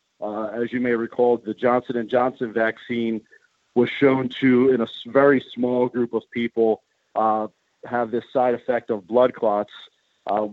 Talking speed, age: 165 wpm, 50-69